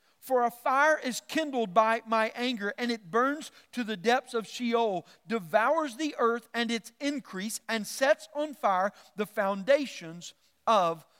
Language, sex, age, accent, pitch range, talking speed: English, male, 40-59, American, 195-245 Hz, 155 wpm